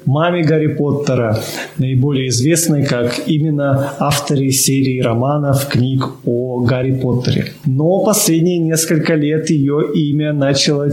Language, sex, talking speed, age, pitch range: Russian, male, 115 wpm, 20-39, 130-160 Hz